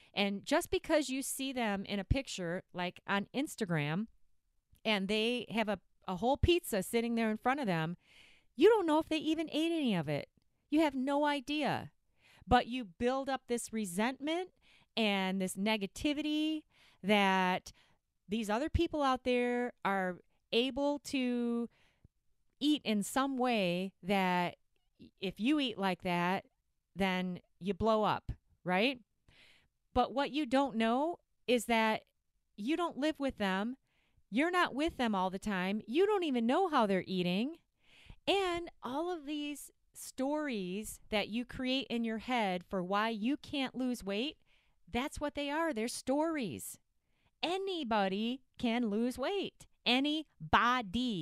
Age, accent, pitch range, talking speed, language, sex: 30-49, American, 200-285 Hz, 150 wpm, English, female